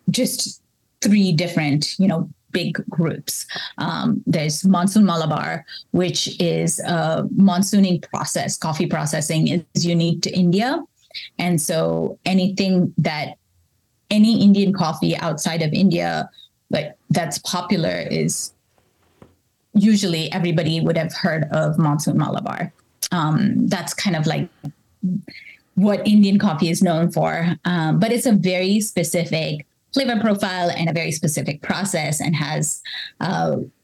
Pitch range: 160-195 Hz